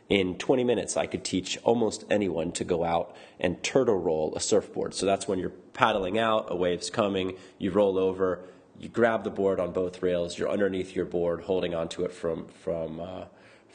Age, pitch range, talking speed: 30-49, 90-115 Hz, 190 wpm